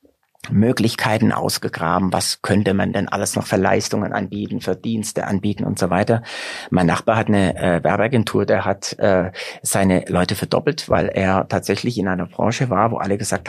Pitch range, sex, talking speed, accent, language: 100-130 Hz, male, 175 wpm, German, German